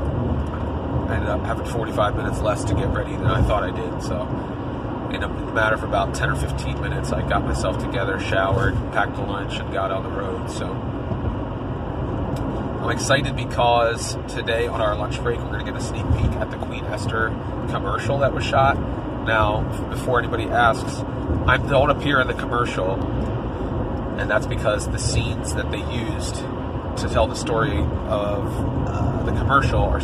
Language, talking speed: English, 175 wpm